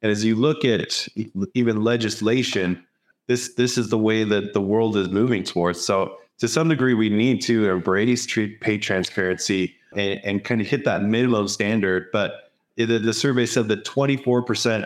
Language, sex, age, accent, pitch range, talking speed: English, male, 30-49, American, 100-115 Hz, 180 wpm